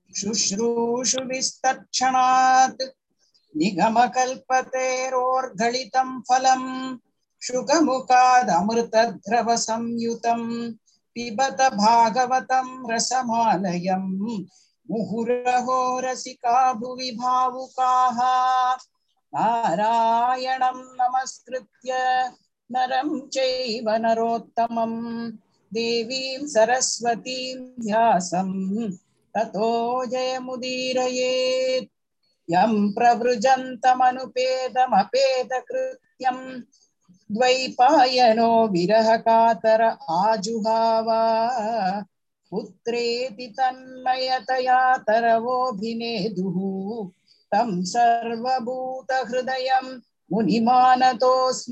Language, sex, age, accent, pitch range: Tamil, female, 60-79, native, 230-255 Hz